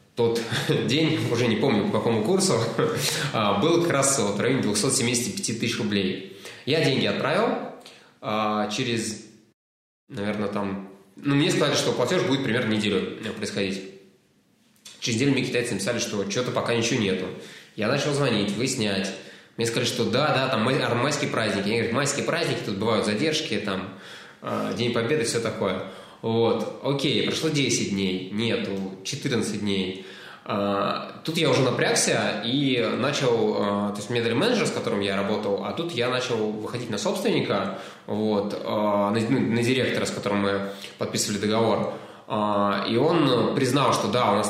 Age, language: 20-39, Russian